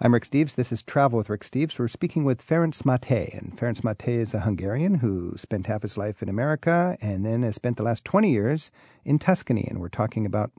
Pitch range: 105-140 Hz